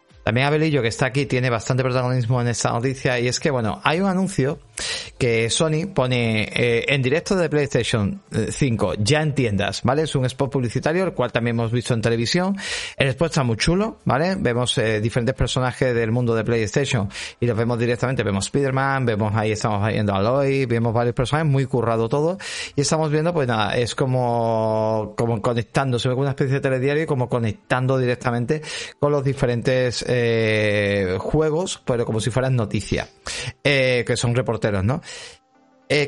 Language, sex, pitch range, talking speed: Spanish, male, 115-150 Hz, 180 wpm